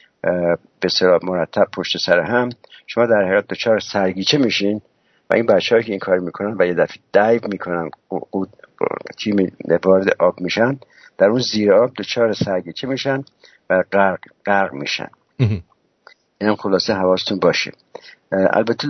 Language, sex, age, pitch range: English, male, 60-79, 90-110 Hz